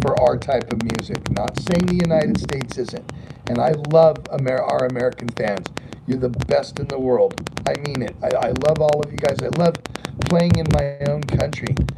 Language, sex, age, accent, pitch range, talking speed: English, male, 40-59, American, 140-170 Hz, 200 wpm